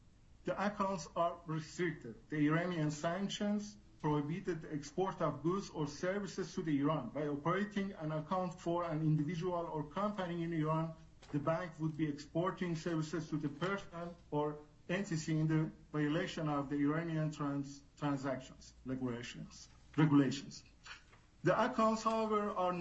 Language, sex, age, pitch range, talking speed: English, male, 50-69, 155-185 Hz, 135 wpm